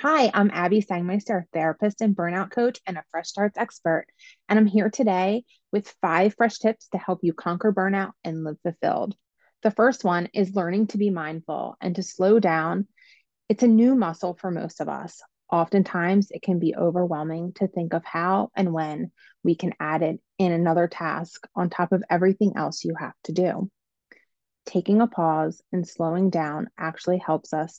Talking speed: 185 wpm